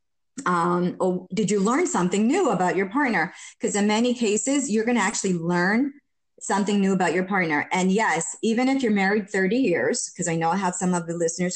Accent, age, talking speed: American, 30-49, 215 wpm